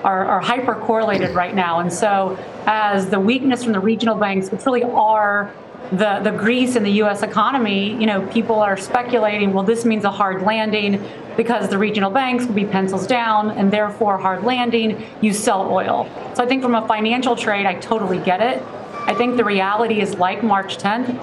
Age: 30-49